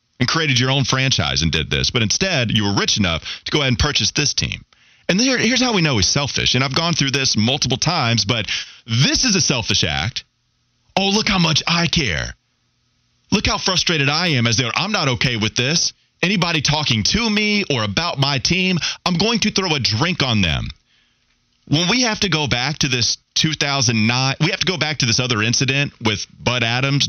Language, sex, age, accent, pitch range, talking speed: English, male, 30-49, American, 125-190 Hz, 215 wpm